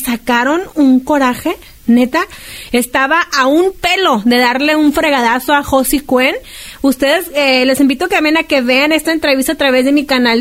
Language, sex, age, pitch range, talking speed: Spanish, female, 30-49, 250-305 Hz, 185 wpm